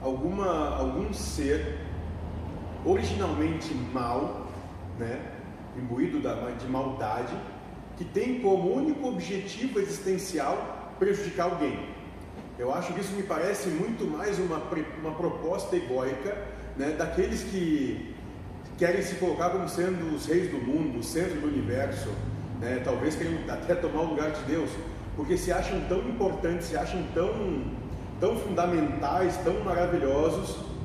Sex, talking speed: male, 130 wpm